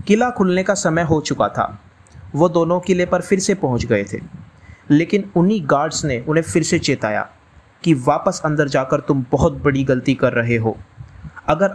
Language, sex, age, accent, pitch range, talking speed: Hindi, male, 30-49, native, 120-180 Hz, 185 wpm